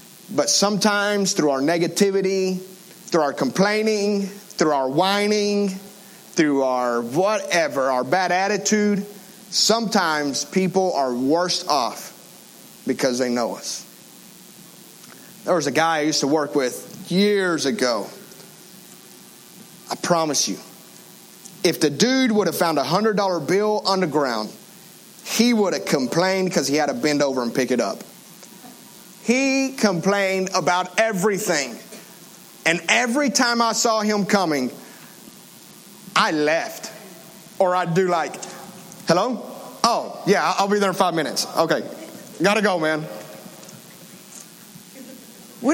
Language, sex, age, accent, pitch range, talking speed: English, male, 30-49, American, 170-205 Hz, 125 wpm